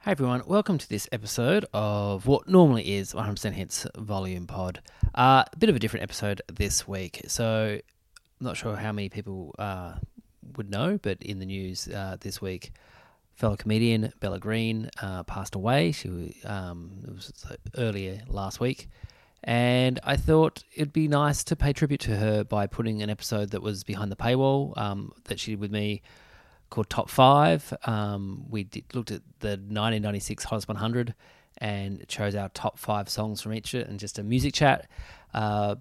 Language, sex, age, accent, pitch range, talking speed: English, male, 30-49, Australian, 100-120 Hz, 175 wpm